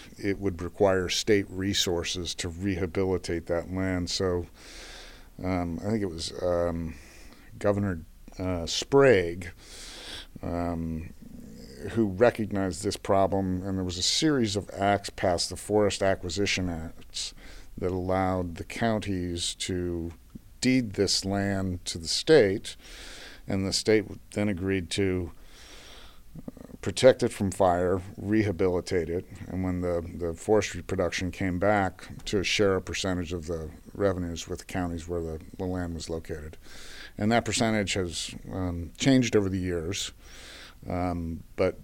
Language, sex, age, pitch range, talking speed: English, male, 50-69, 85-100 Hz, 135 wpm